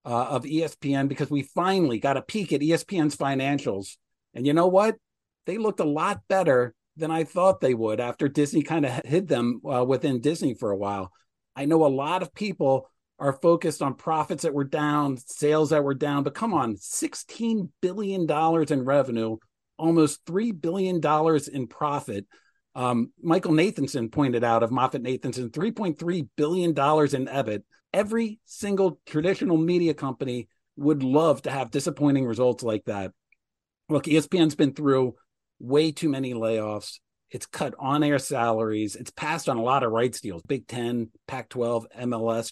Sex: male